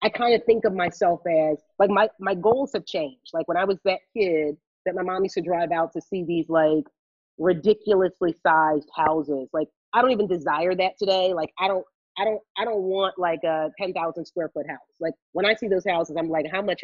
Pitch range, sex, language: 155-190 Hz, female, English